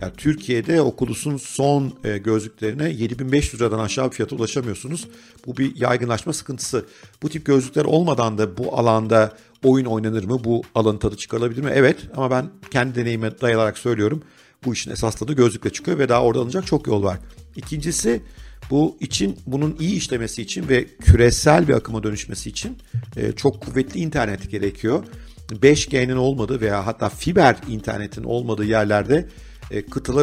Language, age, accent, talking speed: Turkish, 50-69, native, 150 wpm